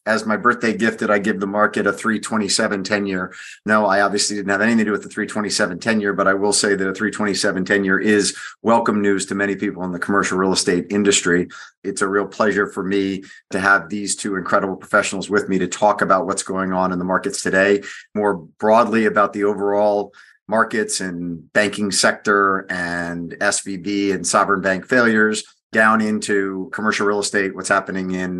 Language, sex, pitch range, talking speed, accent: English, male, 95-115 Hz, 200 wpm, American